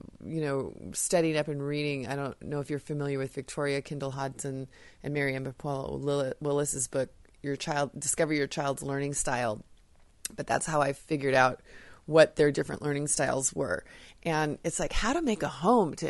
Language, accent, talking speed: English, American, 185 wpm